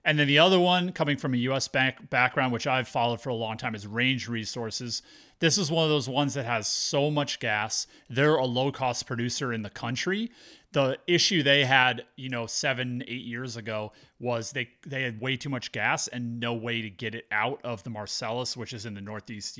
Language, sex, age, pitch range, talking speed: English, male, 30-49, 110-130 Hz, 220 wpm